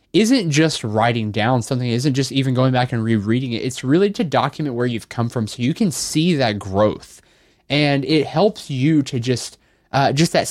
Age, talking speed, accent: 20-39, 210 wpm, American